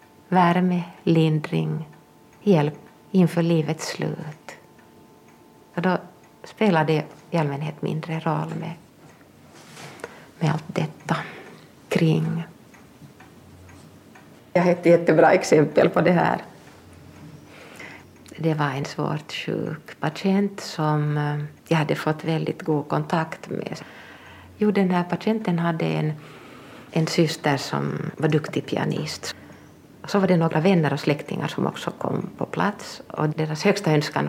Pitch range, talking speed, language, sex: 150-170 Hz, 120 wpm, Swedish, female